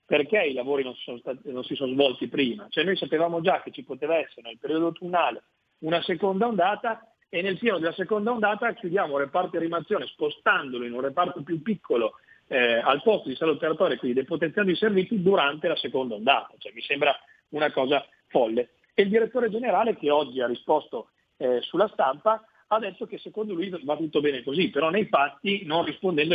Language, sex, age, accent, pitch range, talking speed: Italian, male, 40-59, native, 135-205 Hz, 200 wpm